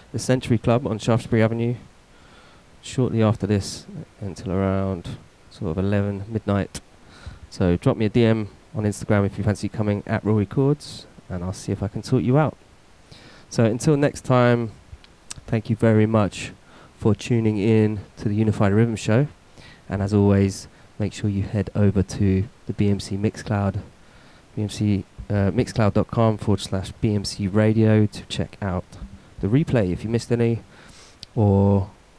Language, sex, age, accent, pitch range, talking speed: English, male, 20-39, British, 100-115 Hz, 150 wpm